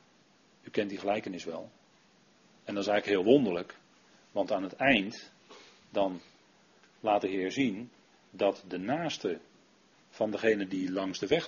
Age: 40-59